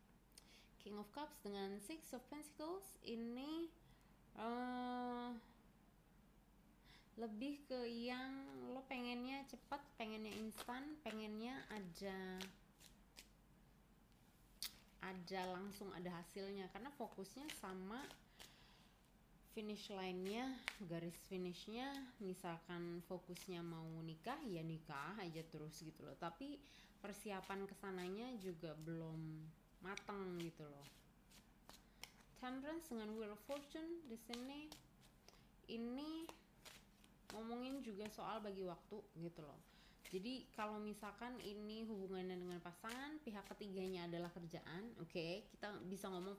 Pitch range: 180-235 Hz